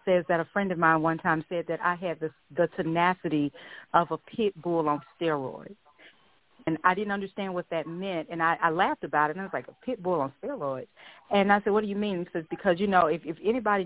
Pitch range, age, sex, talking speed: 165-200 Hz, 40-59, female, 250 wpm